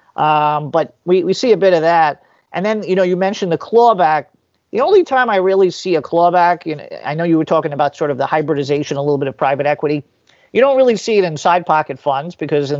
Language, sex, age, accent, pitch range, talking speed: English, male, 50-69, American, 150-185 Hz, 245 wpm